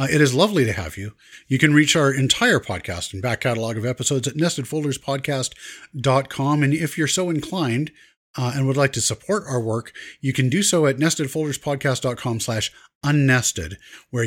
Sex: male